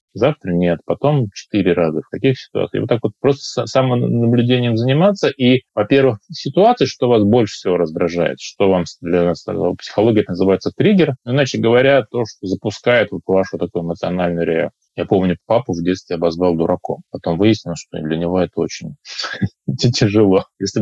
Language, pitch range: Russian, 95-130 Hz